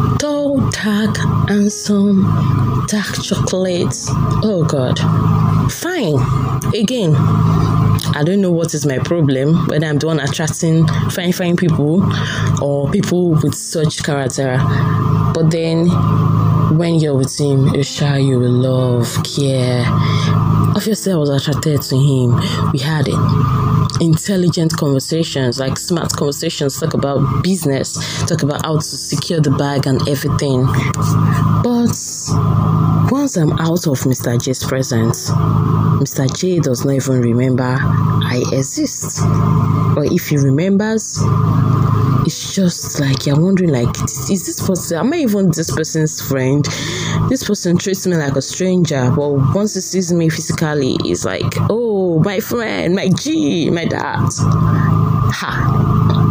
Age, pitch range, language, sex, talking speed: 20-39, 135-165 Hz, English, female, 135 wpm